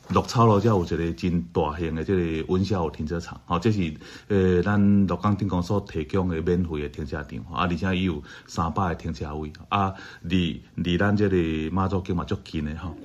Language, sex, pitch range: Chinese, male, 80-100 Hz